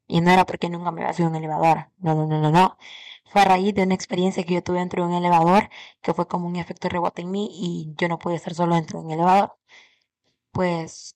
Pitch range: 165-190 Hz